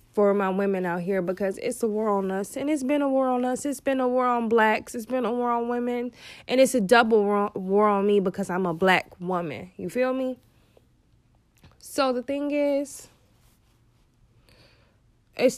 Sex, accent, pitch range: female, American, 200-255 Hz